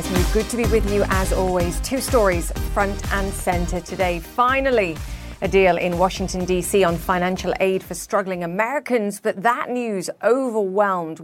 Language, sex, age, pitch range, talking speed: English, female, 30-49, 165-200 Hz, 155 wpm